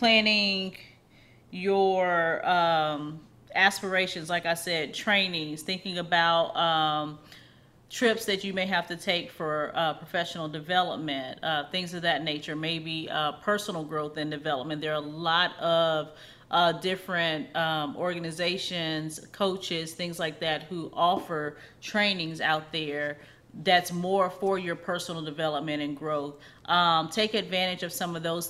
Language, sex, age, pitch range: English, female, 30-49, 160-185 Hz